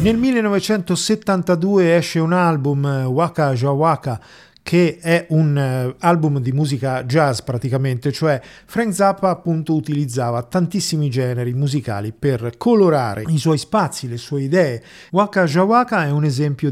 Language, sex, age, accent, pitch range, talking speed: Italian, male, 40-59, native, 125-170 Hz, 130 wpm